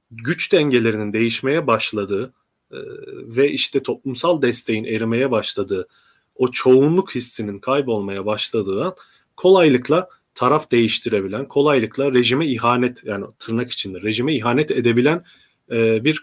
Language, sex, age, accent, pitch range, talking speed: Turkish, male, 30-49, native, 115-140 Hz, 105 wpm